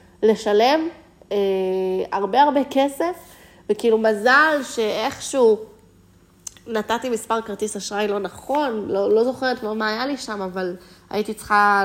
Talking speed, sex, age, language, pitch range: 125 wpm, female, 20-39, Hebrew, 185-220 Hz